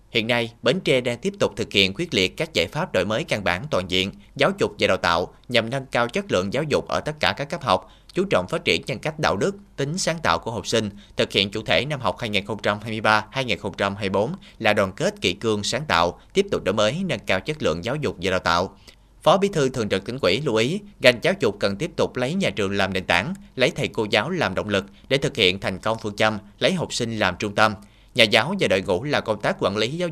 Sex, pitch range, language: male, 100-130 Hz, Vietnamese